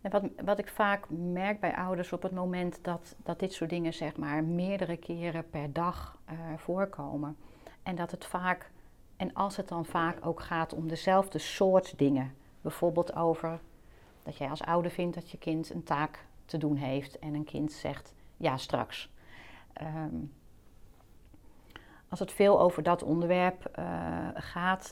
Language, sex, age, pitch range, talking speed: Dutch, female, 40-59, 150-180 Hz, 165 wpm